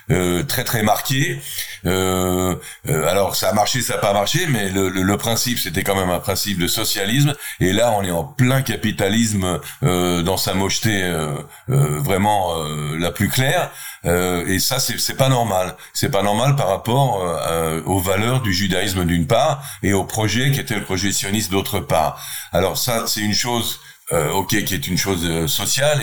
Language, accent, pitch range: French, French, 95-120 Hz